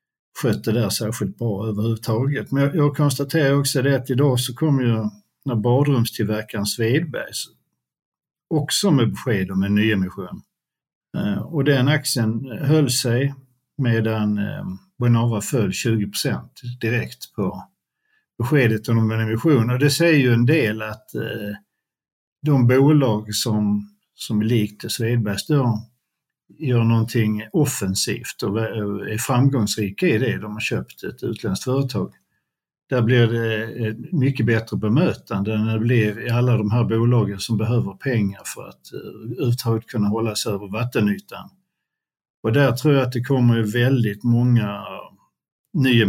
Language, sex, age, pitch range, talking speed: Swedish, male, 50-69, 105-130 Hz, 135 wpm